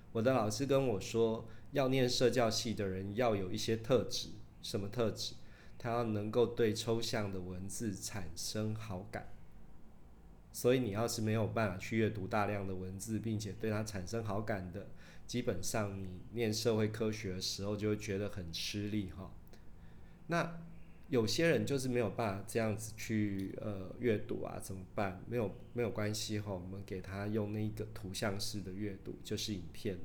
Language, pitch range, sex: Chinese, 100-115 Hz, male